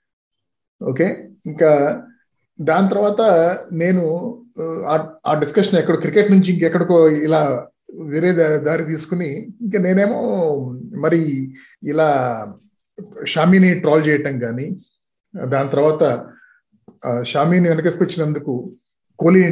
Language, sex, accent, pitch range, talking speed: Telugu, male, native, 155-215 Hz, 90 wpm